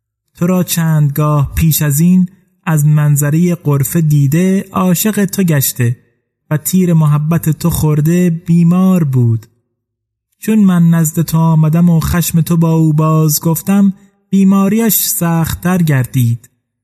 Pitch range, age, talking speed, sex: 130-170 Hz, 30-49, 125 wpm, male